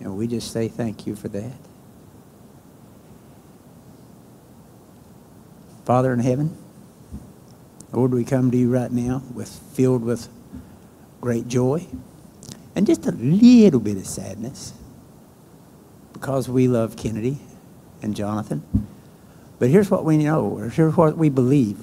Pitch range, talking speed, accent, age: 115-140 Hz, 125 wpm, American, 60-79